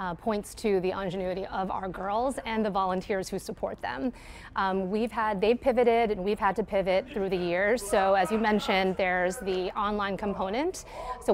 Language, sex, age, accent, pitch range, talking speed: English, female, 30-49, American, 190-230 Hz, 190 wpm